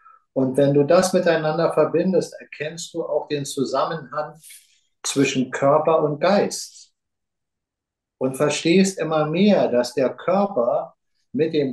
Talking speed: 125 wpm